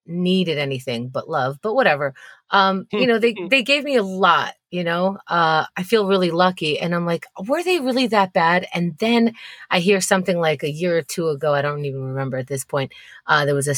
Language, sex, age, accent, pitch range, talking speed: English, female, 30-49, American, 145-225 Hz, 225 wpm